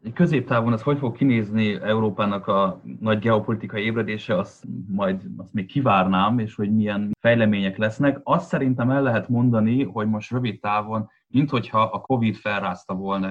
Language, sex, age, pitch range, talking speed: Hungarian, male, 20-39, 100-125 Hz, 155 wpm